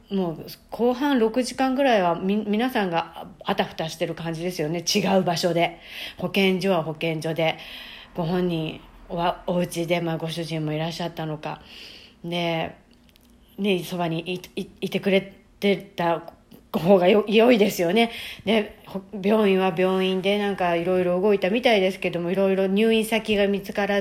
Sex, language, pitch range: female, Japanese, 175-220 Hz